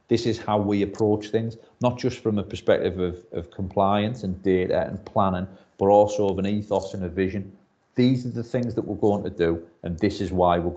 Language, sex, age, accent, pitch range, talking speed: English, male, 40-59, British, 90-105 Hz, 225 wpm